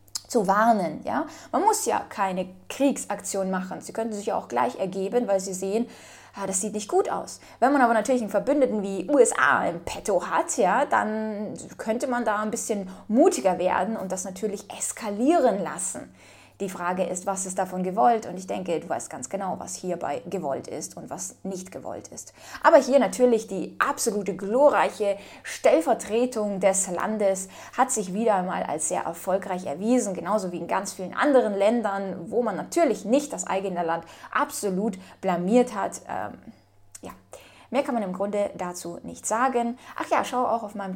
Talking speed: 180 wpm